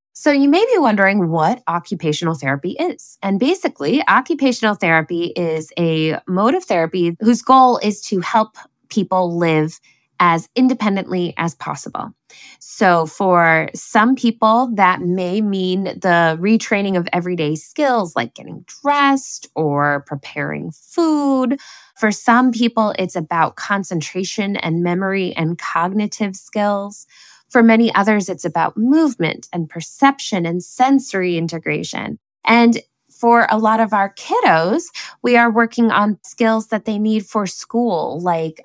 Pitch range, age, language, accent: 170-220 Hz, 20-39, English, American